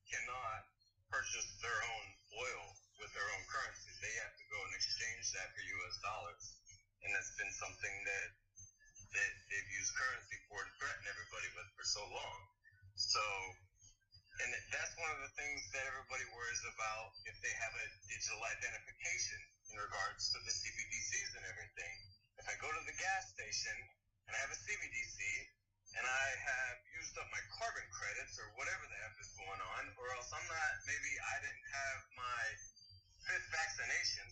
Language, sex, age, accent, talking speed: English, male, 30-49, American, 170 wpm